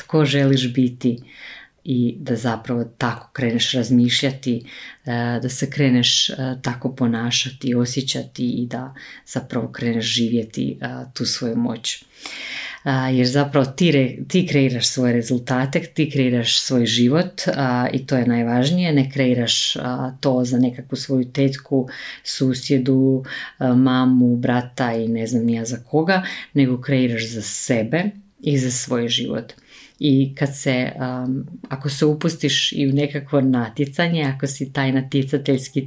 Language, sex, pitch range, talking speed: Croatian, female, 125-140 Hz, 130 wpm